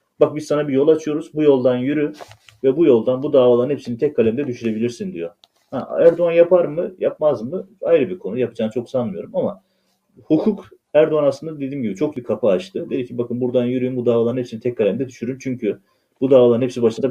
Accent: native